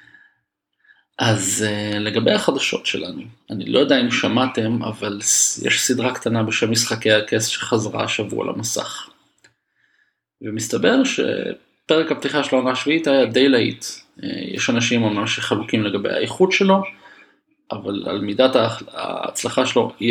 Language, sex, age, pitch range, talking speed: Hebrew, male, 20-39, 110-135 Hz, 120 wpm